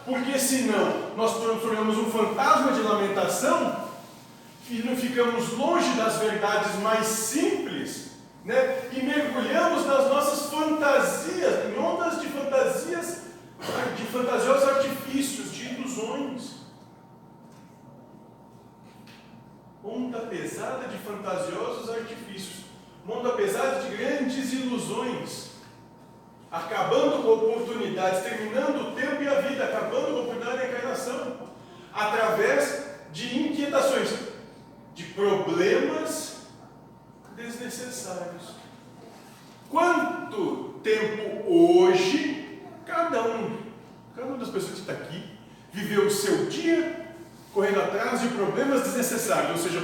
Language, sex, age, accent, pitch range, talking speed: Portuguese, male, 40-59, Brazilian, 220-285 Hz, 100 wpm